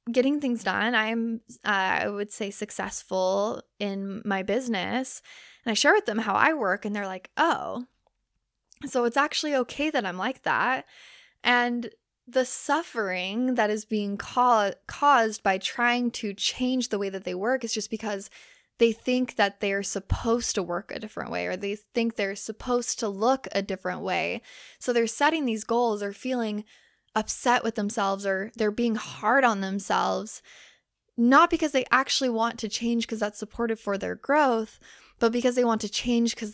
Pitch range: 205-245 Hz